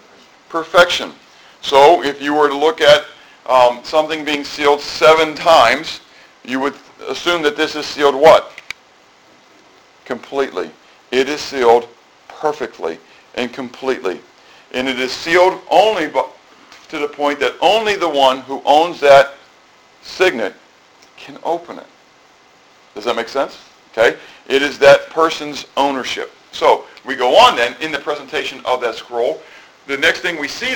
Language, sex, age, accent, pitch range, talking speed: English, male, 50-69, American, 140-175 Hz, 145 wpm